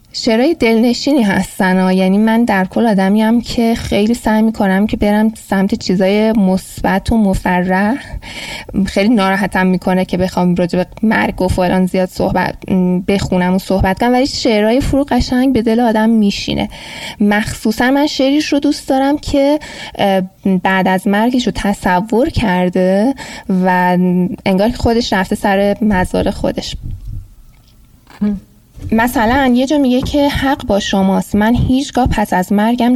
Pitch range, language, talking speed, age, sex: 185-230 Hz, Persian, 140 wpm, 10-29, female